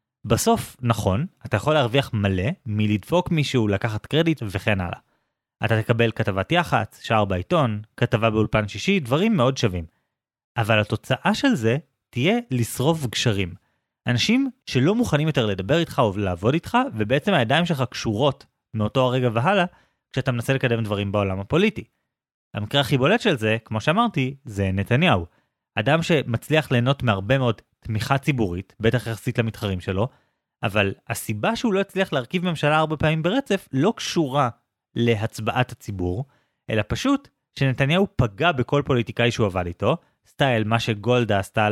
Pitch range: 110-145 Hz